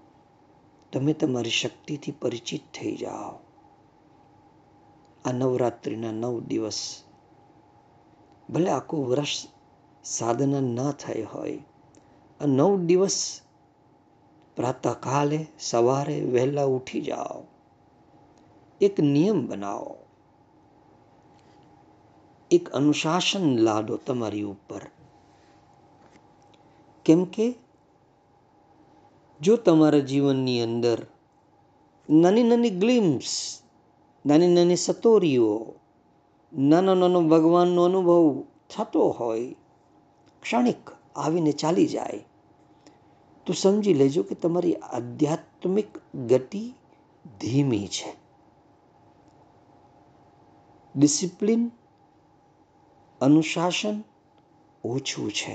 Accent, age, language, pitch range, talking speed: native, 50-69, Gujarati, 125-175 Hz, 60 wpm